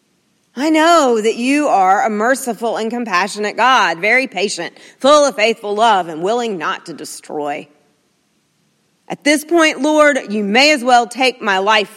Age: 40-59